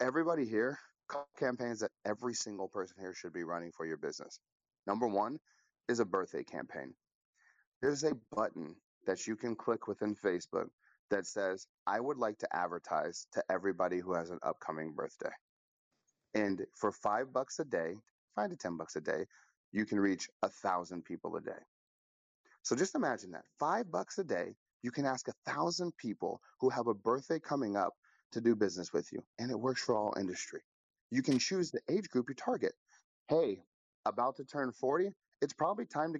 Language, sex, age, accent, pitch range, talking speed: English, male, 30-49, American, 110-180 Hz, 185 wpm